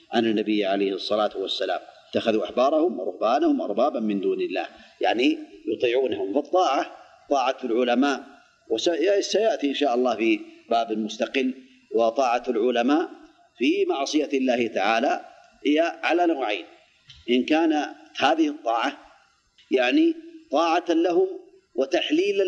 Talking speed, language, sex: 110 wpm, Arabic, male